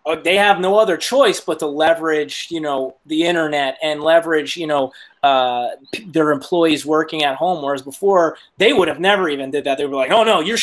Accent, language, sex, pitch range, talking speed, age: American, English, male, 160-220 Hz, 215 wpm, 30-49